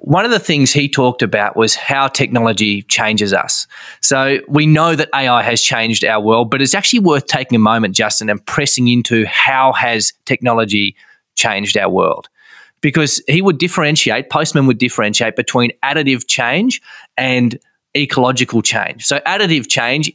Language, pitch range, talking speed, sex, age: English, 120-155 Hz, 160 wpm, male, 20-39